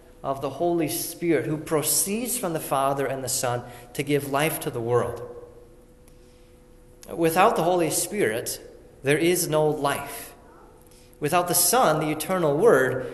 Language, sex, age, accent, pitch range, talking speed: English, male, 30-49, American, 135-170 Hz, 145 wpm